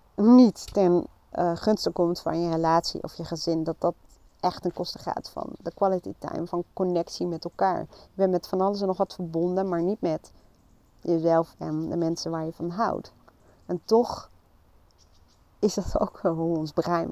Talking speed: 185 wpm